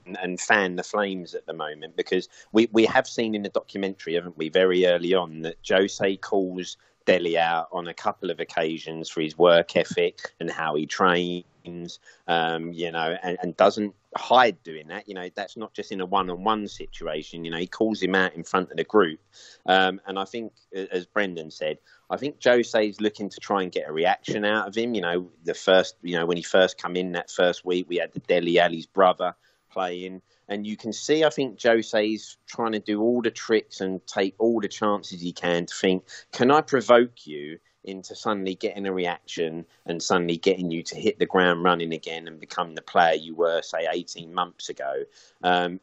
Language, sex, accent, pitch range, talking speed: English, male, British, 85-105 Hz, 210 wpm